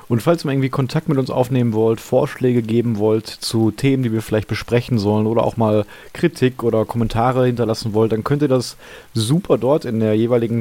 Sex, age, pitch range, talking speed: male, 30-49, 110-125 Hz, 205 wpm